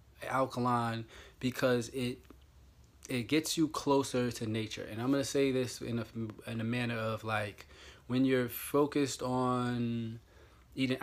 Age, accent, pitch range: 20-39, American, 115-130 Hz